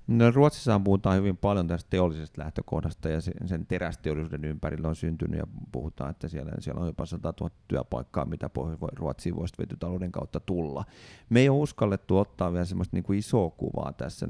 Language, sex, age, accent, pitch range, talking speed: Finnish, male, 30-49, native, 90-105 Hz, 175 wpm